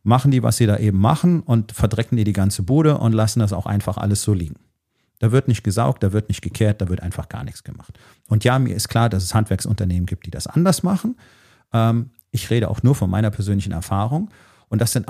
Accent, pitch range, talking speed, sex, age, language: German, 100-125 Hz, 235 wpm, male, 40-59, German